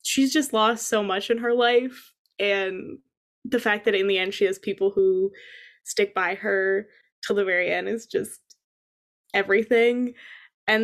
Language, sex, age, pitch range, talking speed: English, female, 20-39, 195-240 Hz, 165 wpm